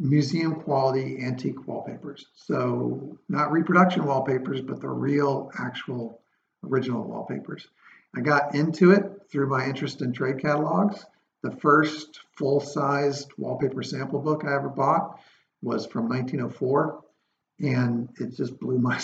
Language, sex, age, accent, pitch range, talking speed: English, male, 50-69, American, 130-150 Hz, 130 wpm